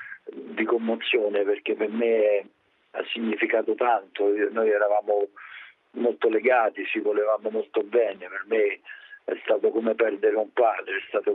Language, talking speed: Italian, 145 wpm